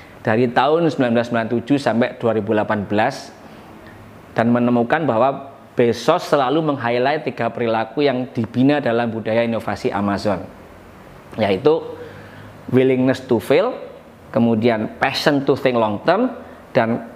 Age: 20-39